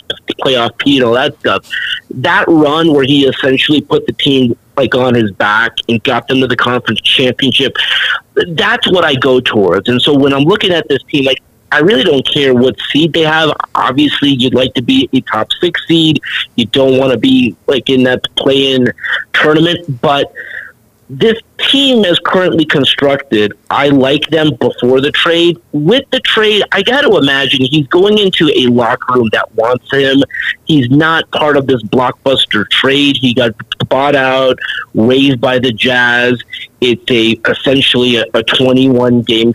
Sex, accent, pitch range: male, American, 125-155 Hz